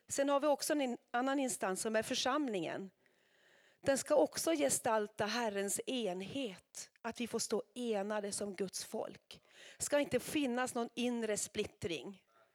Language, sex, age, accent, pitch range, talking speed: Swedish, female, 40-59, native, 215-270 Hz, 150 wpm